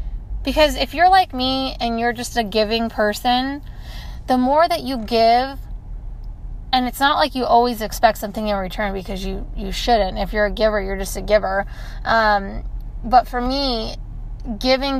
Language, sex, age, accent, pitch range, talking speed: English, female, 20-39, American, 215-260 Hz, 170 wpm